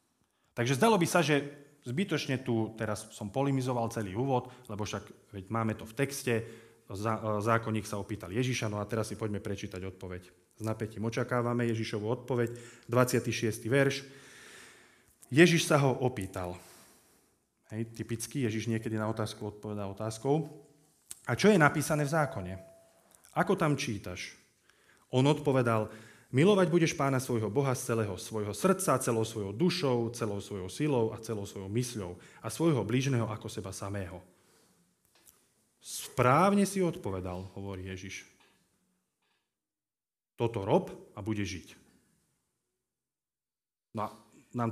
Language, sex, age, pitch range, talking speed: Slovak, male, 30-49, 110-140 Hz, 130 wpm